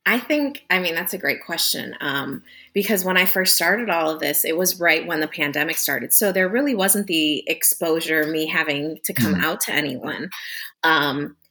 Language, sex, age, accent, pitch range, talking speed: English, female, 20-39, American, 160-215 Hz, 200 wpm